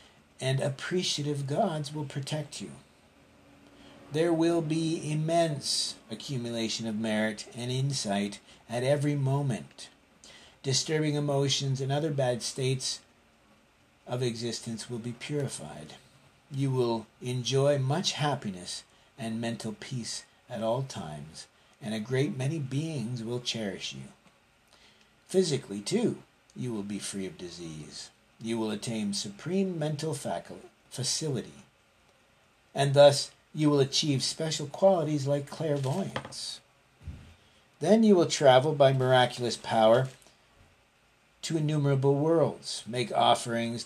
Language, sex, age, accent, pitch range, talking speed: English, male, 50-69, American, 115-145 Hz, 115 wpm